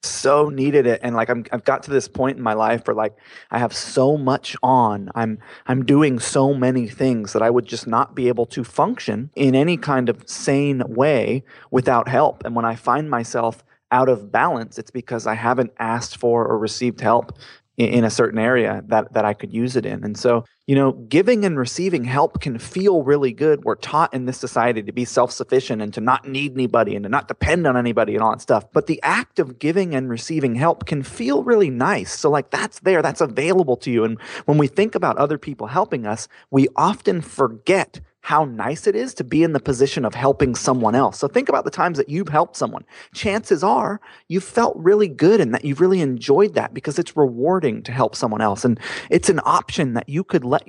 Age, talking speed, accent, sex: 30-49, 225 wpm, American, male